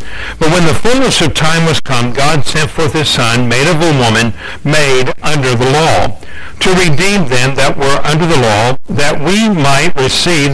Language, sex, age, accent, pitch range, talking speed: English, male, 60-79, American, 125-155 Hz, 190 wpm